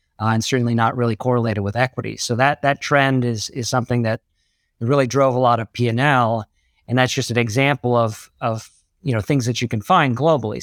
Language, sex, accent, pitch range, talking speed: English, male, American, 115-140 Hz, 210 wpm